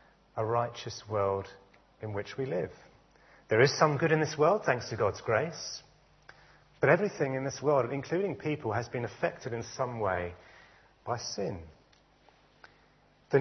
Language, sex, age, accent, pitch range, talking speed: English, male, 30-49, British, 105-145 Hz, 150 wpm